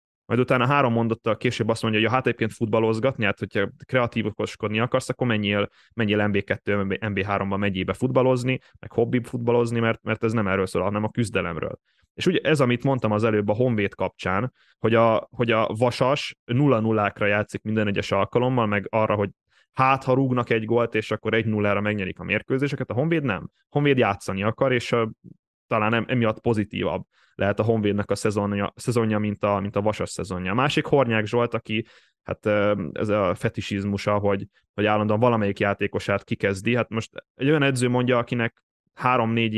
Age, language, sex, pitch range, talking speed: 20-39, Hungarian, male, 105-125 Hz, 175 wpm